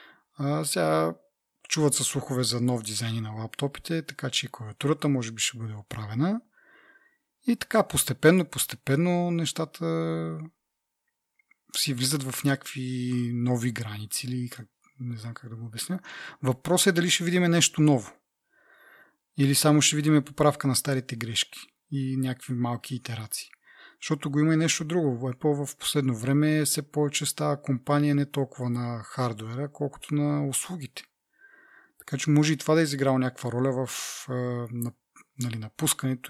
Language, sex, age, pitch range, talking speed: Bulgarian, male, 30-49, 125-155 Hz, 145 wpm